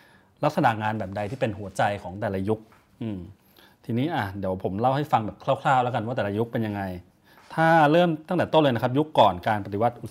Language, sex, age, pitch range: Thai, male, 30-49, 105-135 Hz